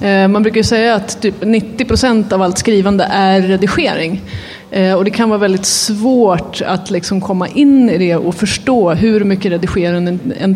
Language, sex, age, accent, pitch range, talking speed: Swedish, female, 30-49, native, 185-235 Hz, 165 wpm